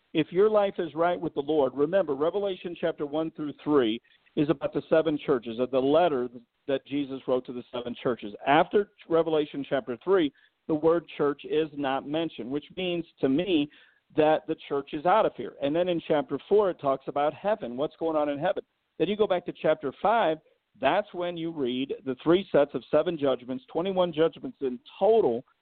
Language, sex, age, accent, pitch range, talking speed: English, male, 50-69, American, 140-180 Hz, 195 wpm